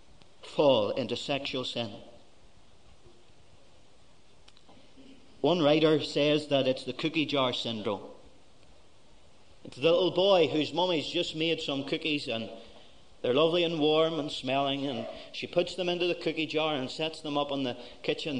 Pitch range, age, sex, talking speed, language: 135-185 Hz, 40-59, male, 145 wpm, English